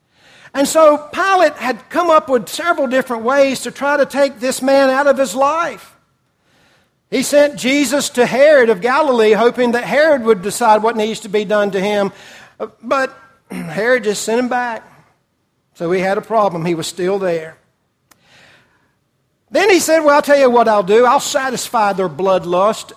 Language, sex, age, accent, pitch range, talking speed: English, male, 60-79, American, 190-255 Hz, 180 wpm